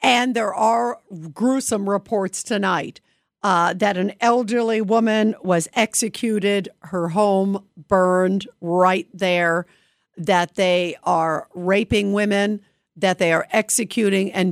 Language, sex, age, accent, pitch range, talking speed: English, female, 50-69, American, 185-235 Hz, 115 wpm